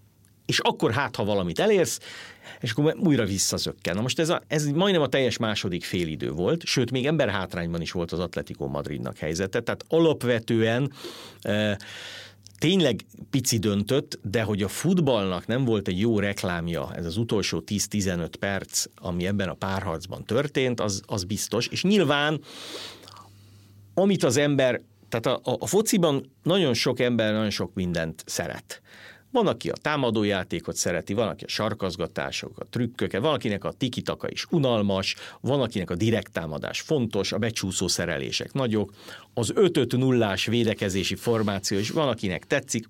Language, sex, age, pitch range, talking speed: Hungarian, male, 50-69, 95-130 Hz, 150 wpm